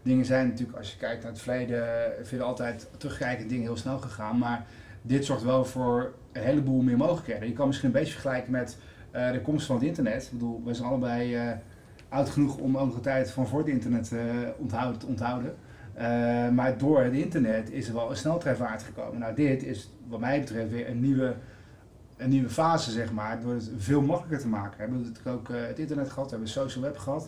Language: Dutch